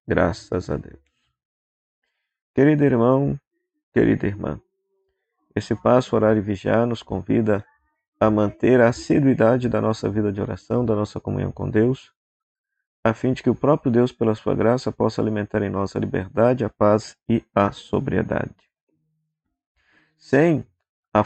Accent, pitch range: Brazilian, 105-135 Hz